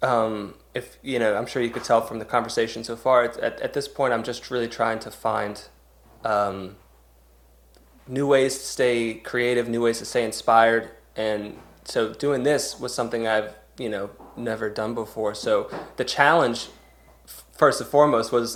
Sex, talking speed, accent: male, 180 wpm, American